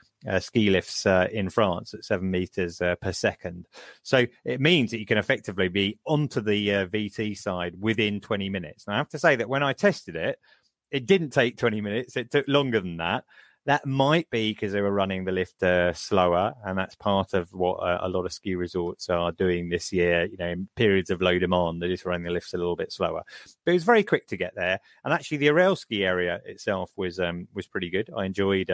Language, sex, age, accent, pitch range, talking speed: English, male, 30-49, British, 90-120 Hz, 235 wpm